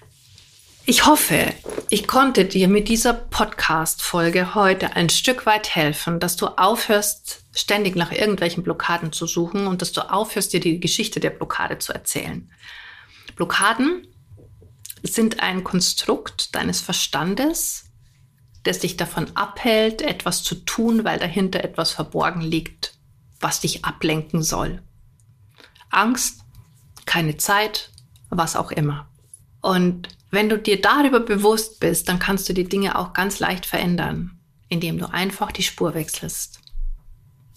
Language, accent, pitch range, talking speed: German, German, 160-220 Hz, 135 wpm